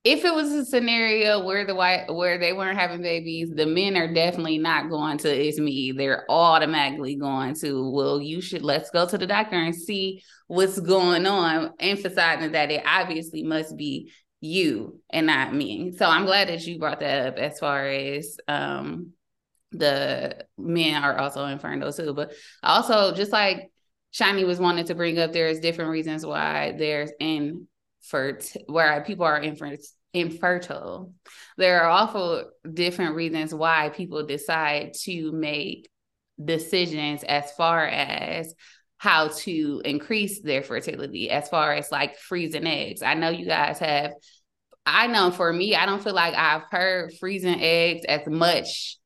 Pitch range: 150-185 Hz